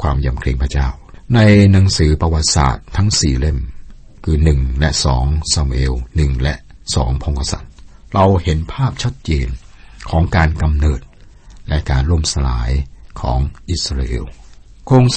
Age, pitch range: 60-79, 70-90 Hz